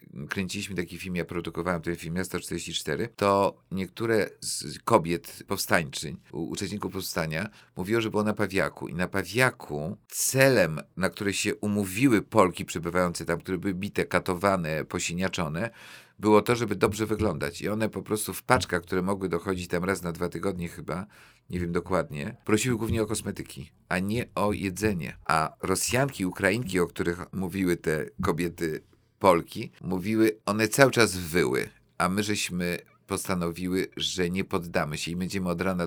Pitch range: 90-105 Hz